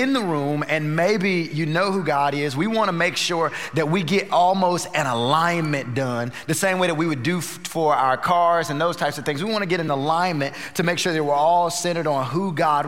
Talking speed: 245 wpm